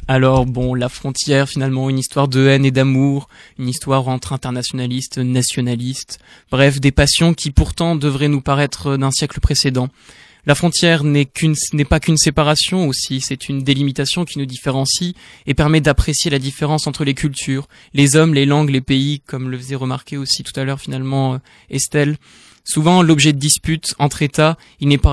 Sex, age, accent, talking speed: male, 20-39, French, 175 wpm